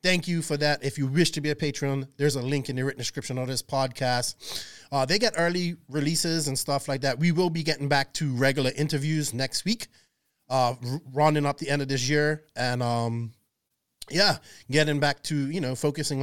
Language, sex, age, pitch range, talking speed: English, male, 30-49, 135-170 Hz, 210 wpm